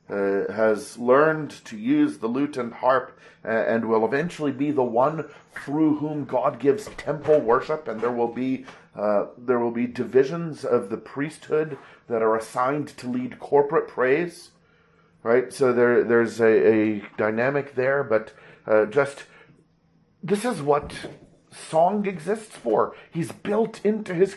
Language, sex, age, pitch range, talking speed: English, male, 40-59, 105-155 Hz, 155 wpm